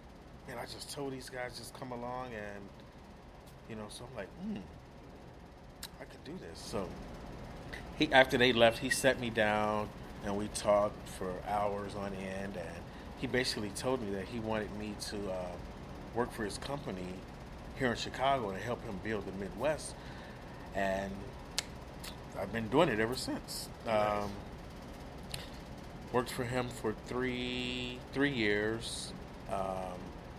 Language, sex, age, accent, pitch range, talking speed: English, male, 30-49, American, 100-125 Hz, 150 wpm